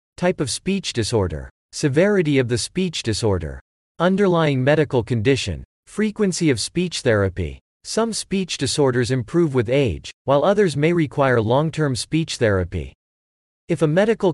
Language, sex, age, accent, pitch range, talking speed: English, male, 40-59, American, 110-160 Hz, 135 wpm